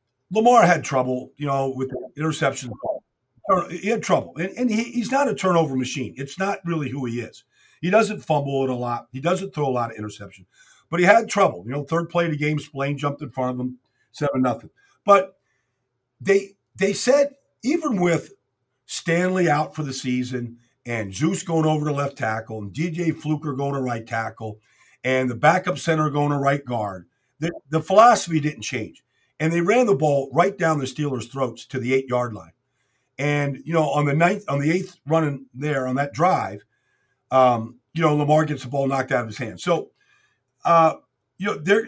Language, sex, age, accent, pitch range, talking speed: English, male, 50-69, American, 125-170 Hz, 200 wpm